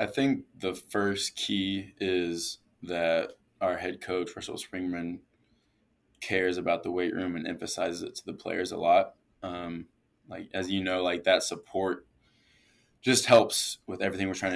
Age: 20-39